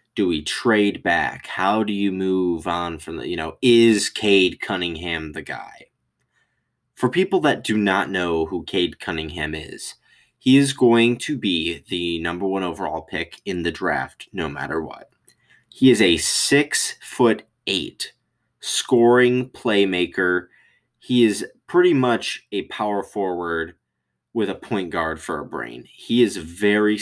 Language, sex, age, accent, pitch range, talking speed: English, male, 20-39, American, 80-105 Hz, 155 wpm